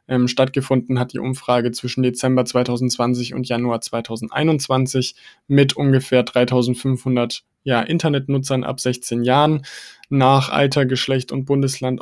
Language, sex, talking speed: German, male, 110 wpm